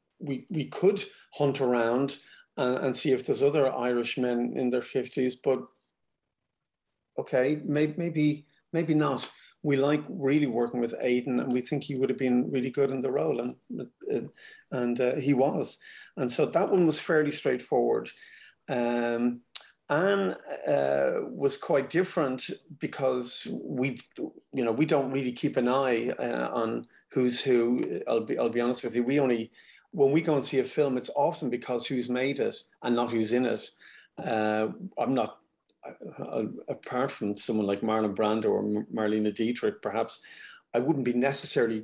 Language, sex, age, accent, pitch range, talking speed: English, male, 40-59, Irish, 120-140 Hz, 170 wpm